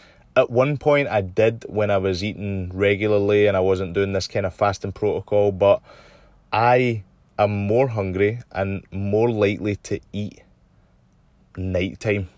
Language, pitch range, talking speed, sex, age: English, 95-105 Hz, 145 wpm, male, 20-39